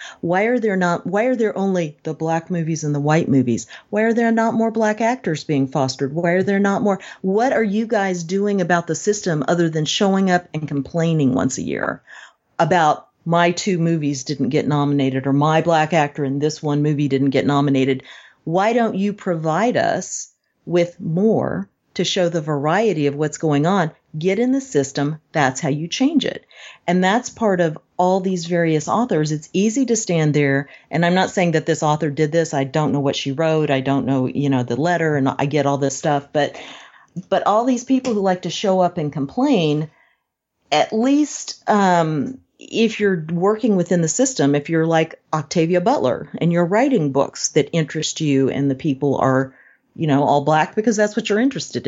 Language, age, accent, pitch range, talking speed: English, 40-59, American, 145-205 Hz, 200 wpm